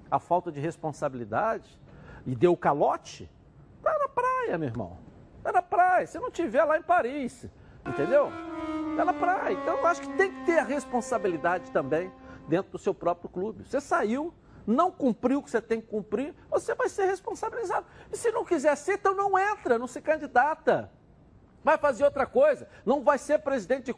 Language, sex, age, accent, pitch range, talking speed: Portuguese, male, 60-79, Brazilian, 190-305 Hz, 190 wpm